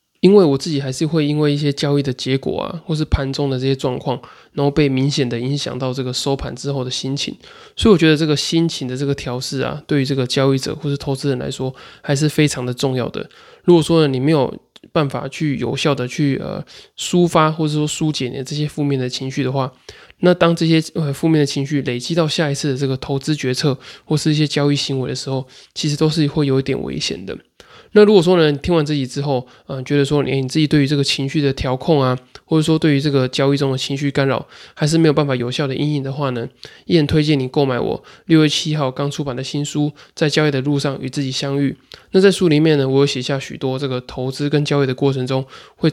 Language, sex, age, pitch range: Chinese, male, 20-39, 135-155 Hz